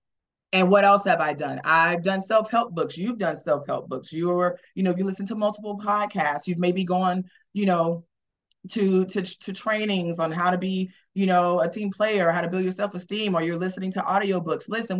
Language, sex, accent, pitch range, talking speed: English, female, American, 170-205 Hz, 210 wpm